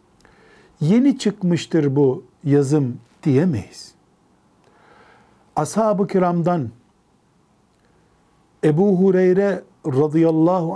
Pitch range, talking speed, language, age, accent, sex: 140-180 Hz, 55 wpm, Turkish, 60-79, native, male